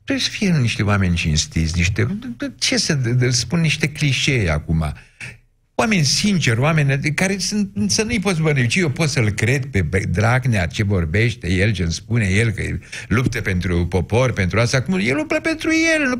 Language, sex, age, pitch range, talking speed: Romanian, male, 60-79, 100-155 Hz, 180 wpm